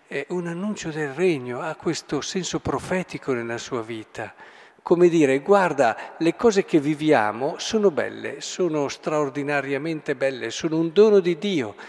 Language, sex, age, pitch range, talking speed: Italian, male, 50-69, 135-180 Hz, 140 wpm